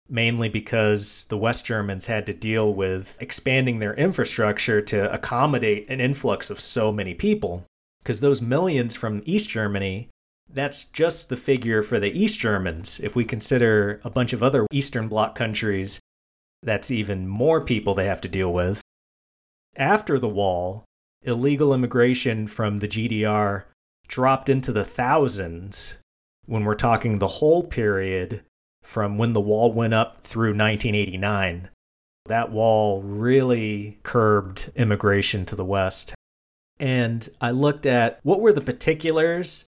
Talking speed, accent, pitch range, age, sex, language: 145 wpm, American, 100-125 Hz, 30-49, male, English